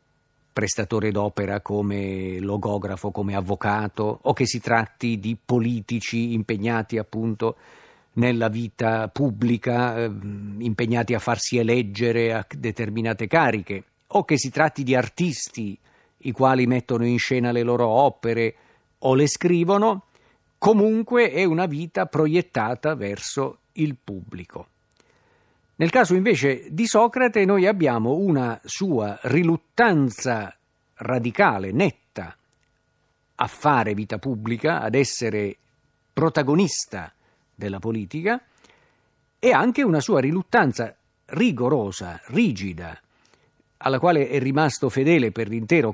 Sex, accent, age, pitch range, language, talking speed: male, native, 50-69, 110-150 Hz, Italian, 110 wpm